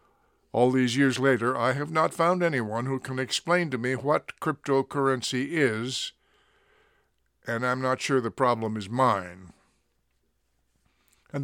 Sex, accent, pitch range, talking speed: male, American, 120-150 Hz, 135 wpm